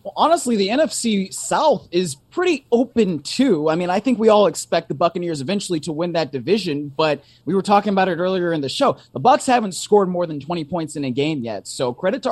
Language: English